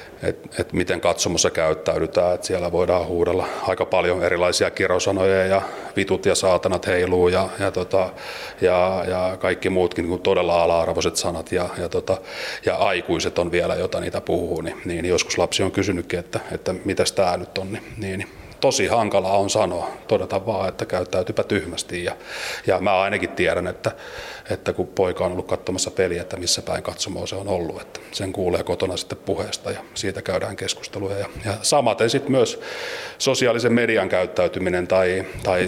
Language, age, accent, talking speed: Finnish, 30-49, native, 165 wpm